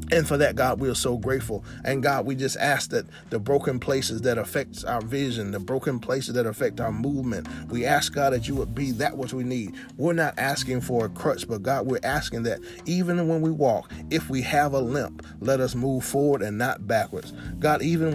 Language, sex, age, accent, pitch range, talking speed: English, male, 30-49, American, 115-145 Hz, 225 wpm